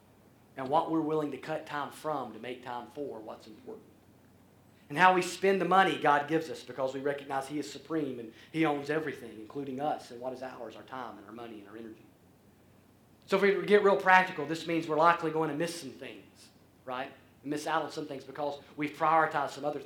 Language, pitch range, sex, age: English, 130-165 Hz, male, 40-59